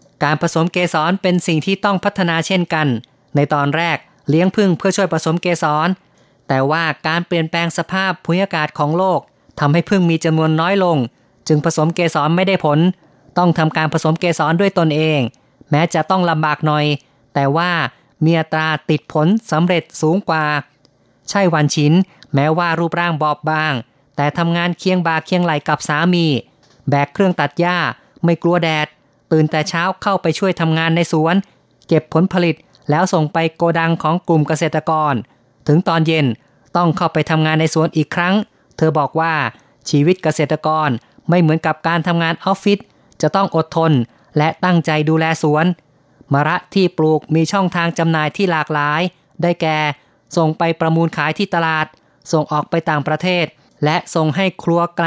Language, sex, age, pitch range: Thai, female, 20-39, 150-175 Hz